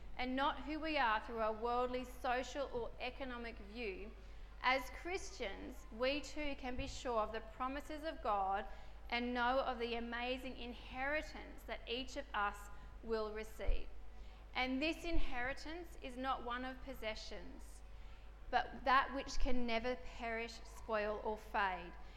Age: 40-59